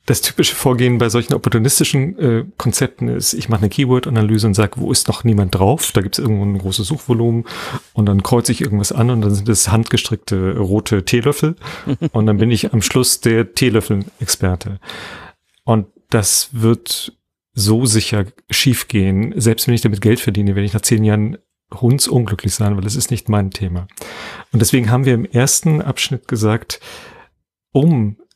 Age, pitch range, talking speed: 40-59, 105-125 Hz, 175 wpm